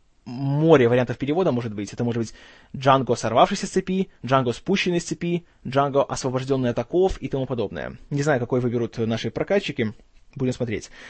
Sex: male